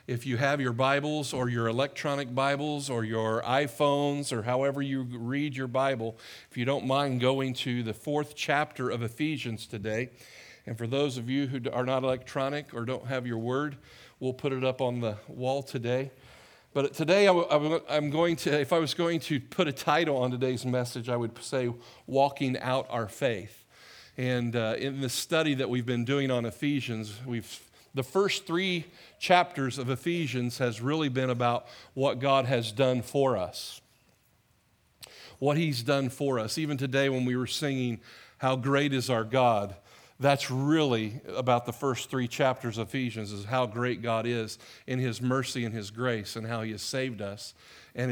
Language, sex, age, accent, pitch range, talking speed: English, male, 50-69, American, 120-140 Hz, 180 wpm